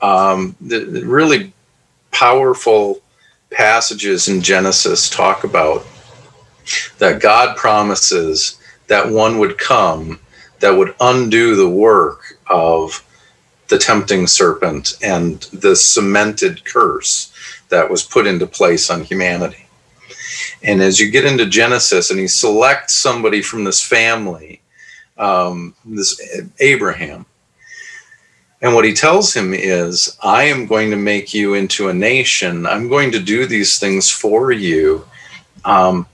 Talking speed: 130 wpm